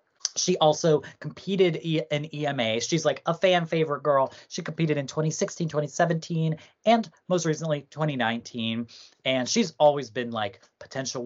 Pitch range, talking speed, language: 120-155 Hz, 140 wpm, English